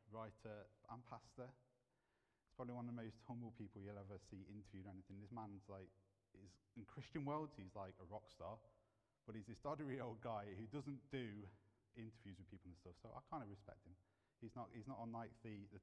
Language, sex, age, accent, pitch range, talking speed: English, male, 30-49, British, 95-120 Hz, 215 wpm